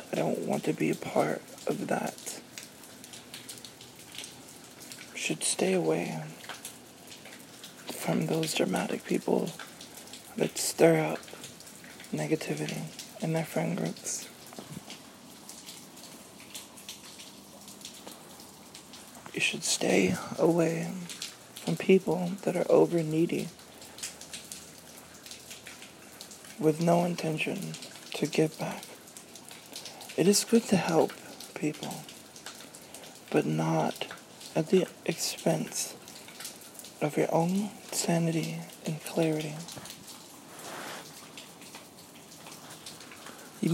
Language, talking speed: English, 80 wpm